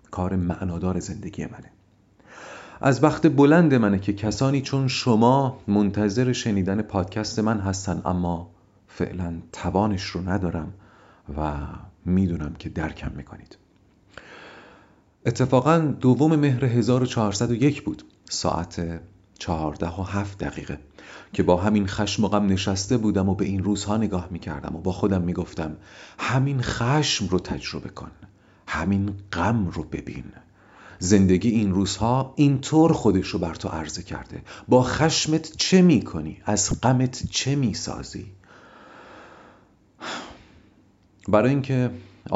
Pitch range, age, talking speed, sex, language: 90-115 Hz, 40-59, 115 wpm, male, Persian